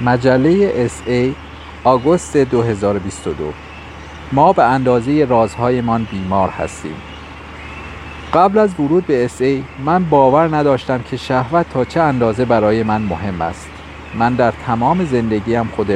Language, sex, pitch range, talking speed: English, male, 95-130 Hz, 125 wpm